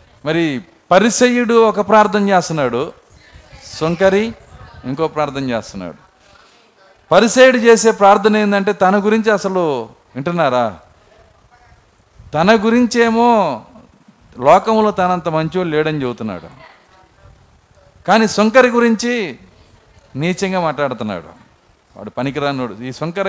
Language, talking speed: Telugu, 85 wpm